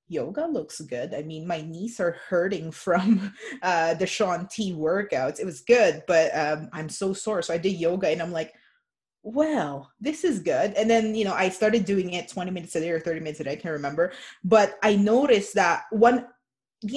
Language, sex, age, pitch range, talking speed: English, female, 20-39, 170-215 Hz, 210 wpm